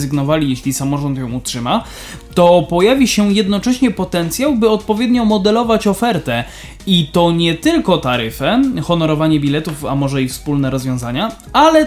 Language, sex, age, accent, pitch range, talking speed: Polish, male, 20-39, native, 165-220 Hz, 130 wpm